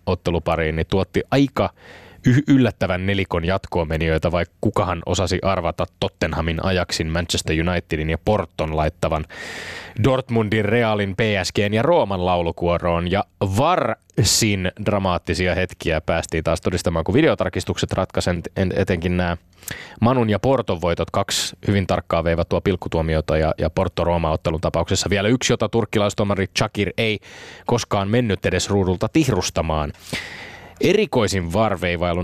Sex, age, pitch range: male, 20-39, 90-110 Hz